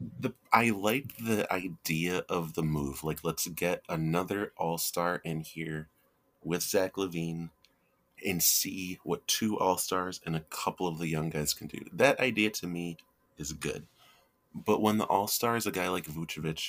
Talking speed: 170 wpm